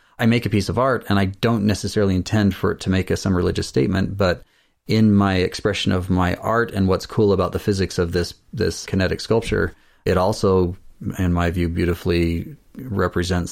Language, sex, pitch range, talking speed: English, male, 85-100 Hz, 195 wpm